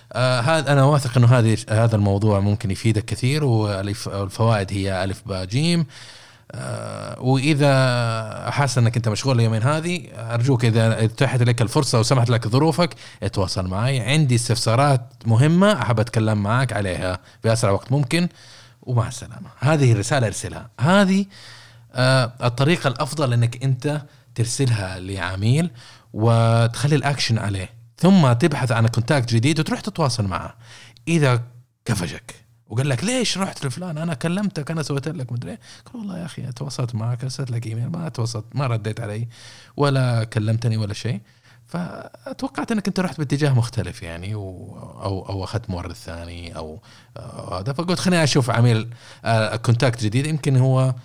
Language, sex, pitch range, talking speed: Arabic, male, 110-140 Hz, 140 wpm